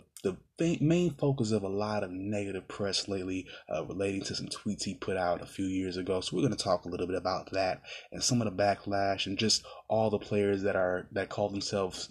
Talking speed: 235 wpm